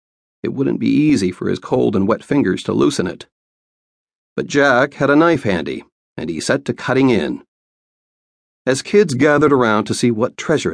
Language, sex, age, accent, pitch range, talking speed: English, male, 40-59, American, 90-135 Hz, 185 wpm